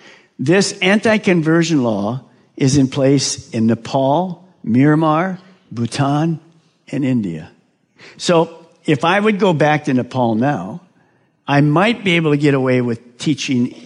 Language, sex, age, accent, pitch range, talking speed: English, male, 50-69, American, 120-165 Hz, 130 wpm